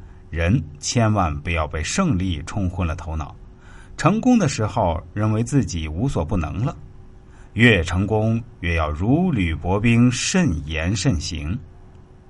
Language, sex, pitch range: Chinese, male, 85-125 Hz